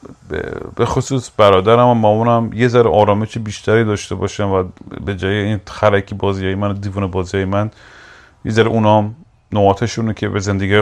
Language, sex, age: Persian, male, 30-49